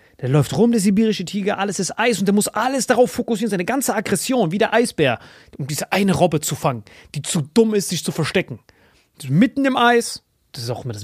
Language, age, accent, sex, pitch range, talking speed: German, 30-49, German, male, 135-205 Hz, 230 wpm